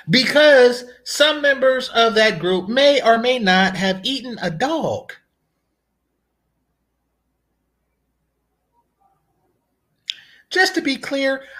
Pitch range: 245-330 Hz